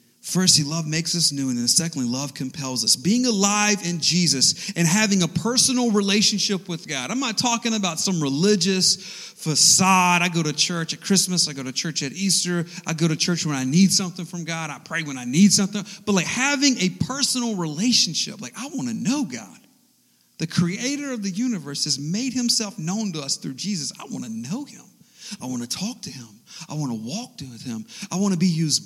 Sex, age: male, 40-59